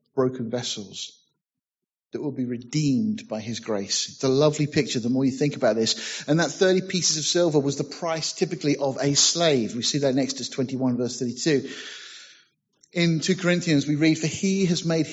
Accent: British